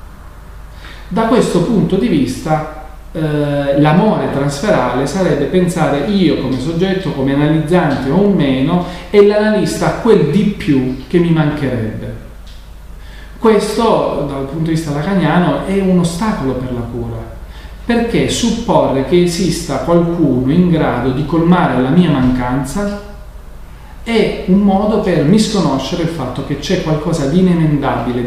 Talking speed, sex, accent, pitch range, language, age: 130 wpm, male, native, 130-190 Hz, Italian, 40-59